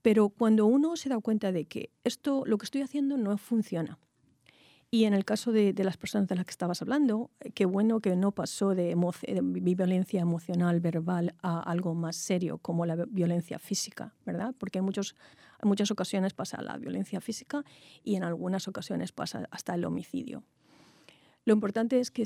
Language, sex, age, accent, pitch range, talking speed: Spanish, female, 40-59, Spanish, 180-225 Hz, 190 wpm